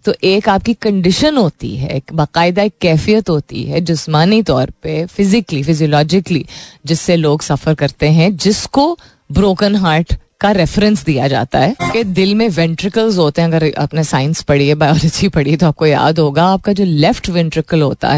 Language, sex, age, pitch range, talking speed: Hindi, female, 30-49, 155-195 Hz, 160 wpm